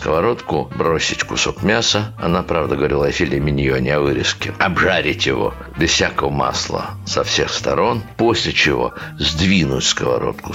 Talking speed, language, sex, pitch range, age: 135 wpm, Russian, male, 75-105 Hz, 60-79